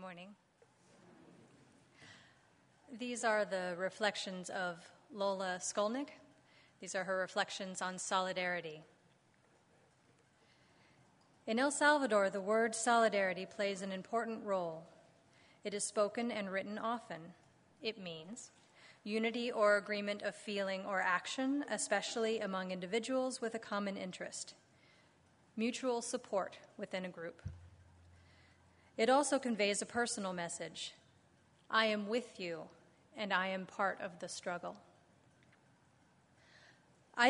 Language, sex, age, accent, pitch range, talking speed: English, female, 30-49, American, 185-220 Hz, 110 wpm